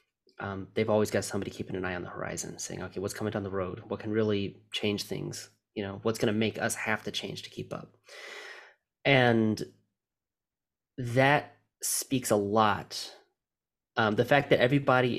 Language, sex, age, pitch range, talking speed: English, male, 20-39, 100-120 Hz, 180 wpm